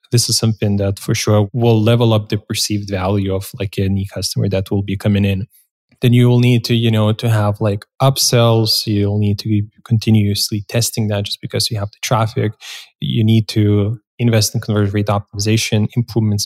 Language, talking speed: English, 195 wpm